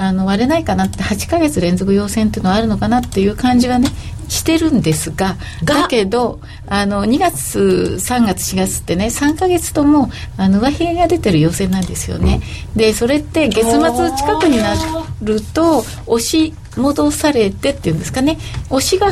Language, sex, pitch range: Japanese, female, 160-265 Hz